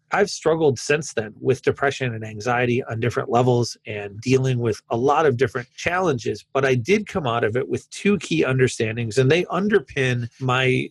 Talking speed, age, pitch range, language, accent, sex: 185 wpm, 30-49, 120-145 Hz, English, American, male